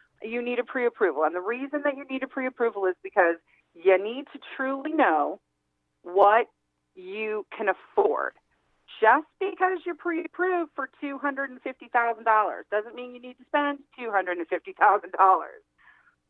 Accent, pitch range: American, 190-280 Hz